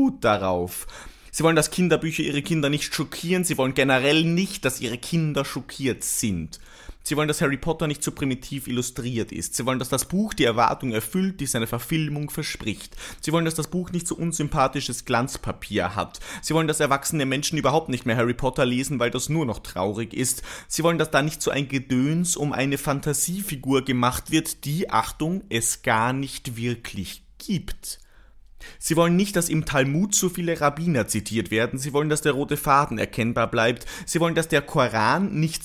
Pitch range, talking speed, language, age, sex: 125-165 Hz, 190 wpm, German, 30-49, male